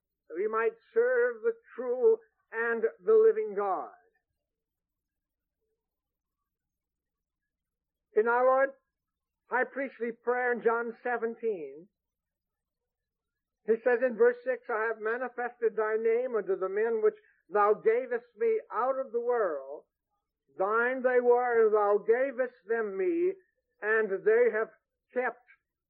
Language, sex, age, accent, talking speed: English, male, 60-79, American, 115 wpm